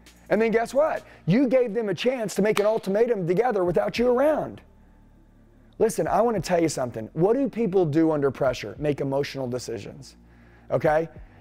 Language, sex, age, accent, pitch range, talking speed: English, male, 30-49, American, 155-200 Hz, 180 wpm